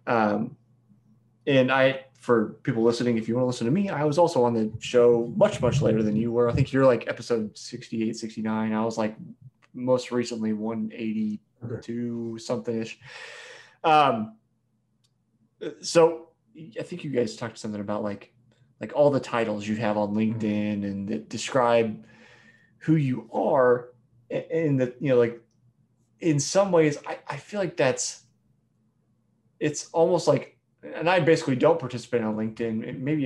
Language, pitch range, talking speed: English, 115-135 Hz, 155 wpm